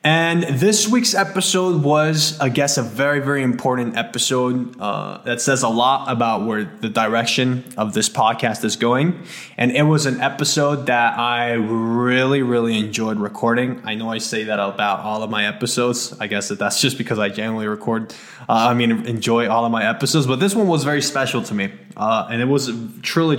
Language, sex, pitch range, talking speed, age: English, male, 115-145 Hz, 200 wpm, 20-39